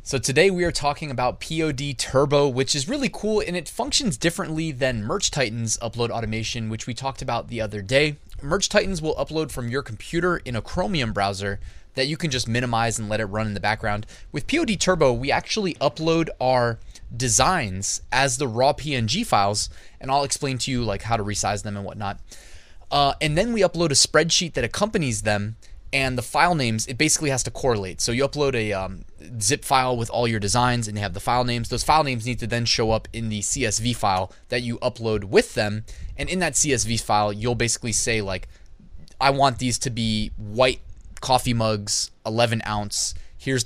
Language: English